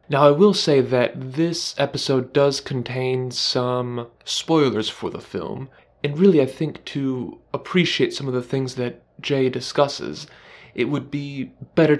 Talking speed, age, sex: 155 wpm, 20-39, male